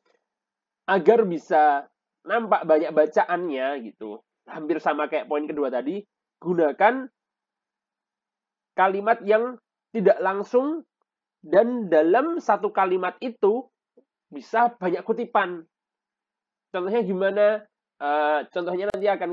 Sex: male